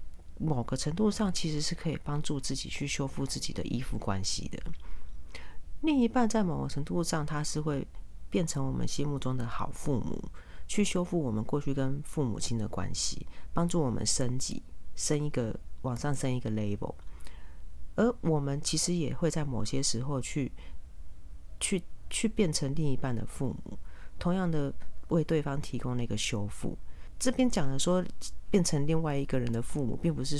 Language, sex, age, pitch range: Chinese, female, 40-59, 115-165 Hz